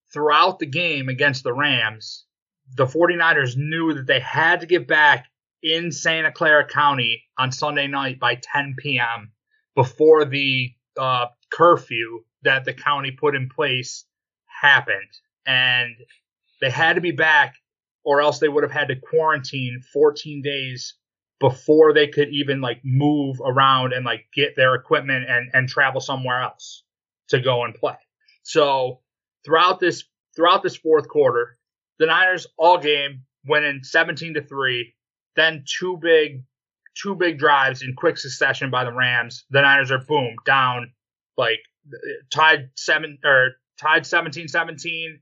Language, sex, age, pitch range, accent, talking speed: English, male, 30-49, 130-155 Hz, American, 150 wpm